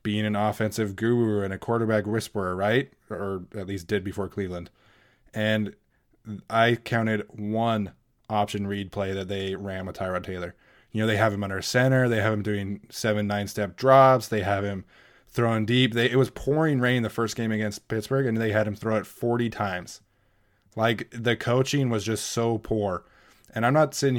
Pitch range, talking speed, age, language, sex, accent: 100-115 Hz, 190 wpm, 20-39, English, male, American